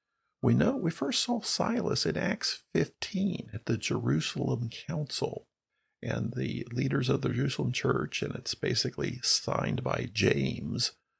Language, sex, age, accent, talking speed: English, male, 50-69, American, 140 wpm